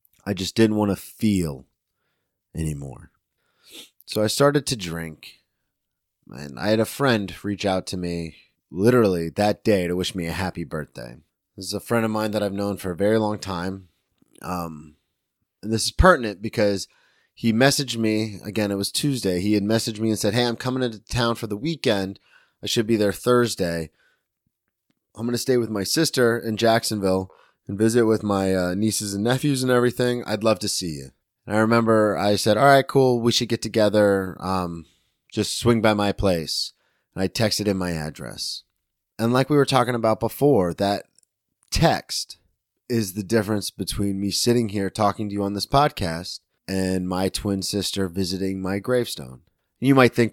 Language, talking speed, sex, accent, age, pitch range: English, 185 wpm, male, American, 30-49, 95-115 Hz